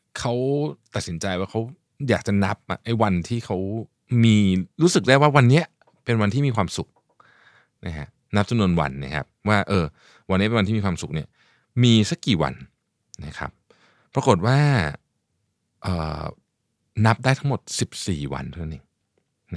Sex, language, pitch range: male, Thai, 85-125 Hz